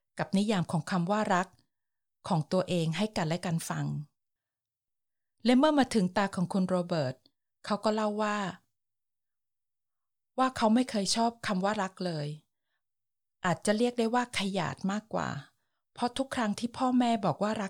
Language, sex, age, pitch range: Thai, female, 20-39, 155-215 Hz